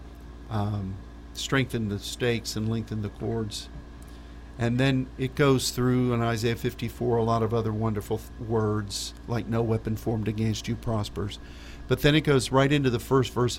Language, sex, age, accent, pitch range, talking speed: English, male, 50-69, American, 75-125 Hz, 170 wpm